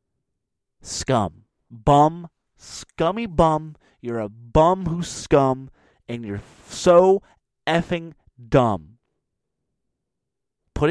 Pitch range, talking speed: 110-145 Hz, 90 wpm